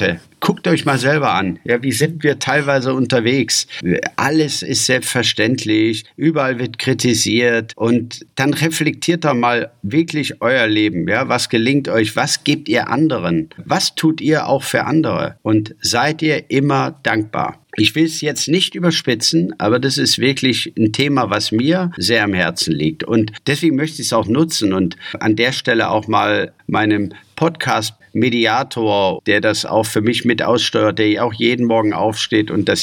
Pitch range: 105-135 Hz